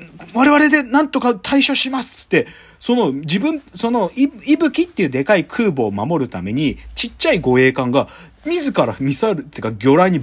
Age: 40-59